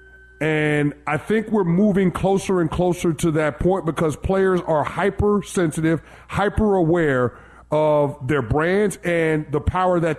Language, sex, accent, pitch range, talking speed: English, male, American, 155-200 Hz, 135 wpm